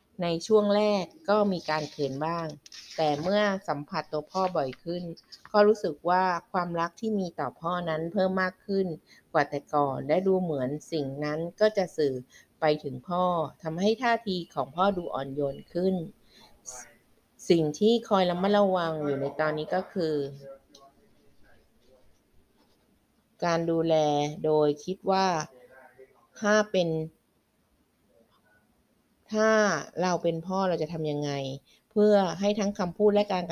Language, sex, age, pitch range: Thai, female, 20-39, 150-185 Hz